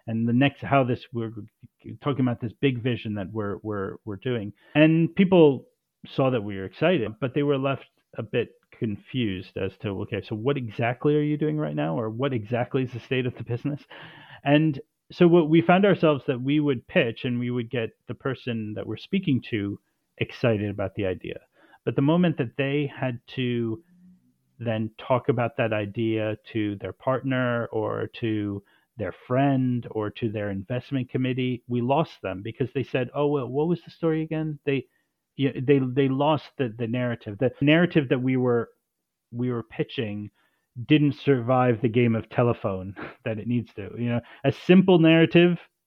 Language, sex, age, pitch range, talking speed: English, male, 40-59, 110-145 Hz, 185 wpm